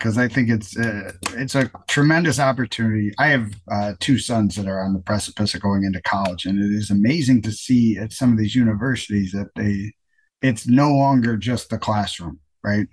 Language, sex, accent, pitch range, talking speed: English, male, American, 100-135 Hz, 200 wpm